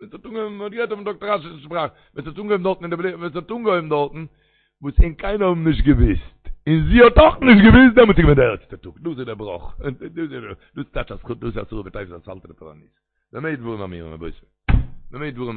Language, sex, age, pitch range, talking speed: Hebrew, male, 60-79, 110-160 Hz, 255 wpm